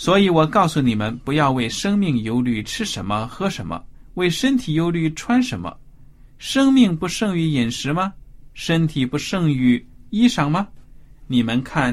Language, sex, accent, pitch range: Chinese, male, native, 125-165 Hz